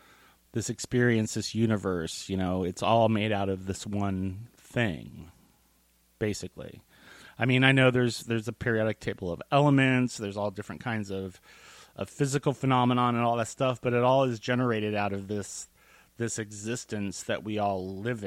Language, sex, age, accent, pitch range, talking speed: English, male, 30-49, American, 100-125 Hz, 170 wpm